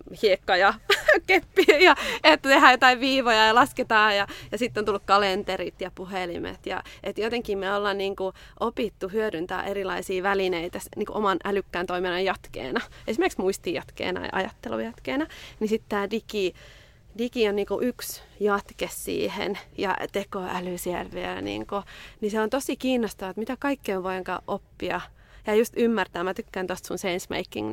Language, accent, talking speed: Finnish, native, 150 wpm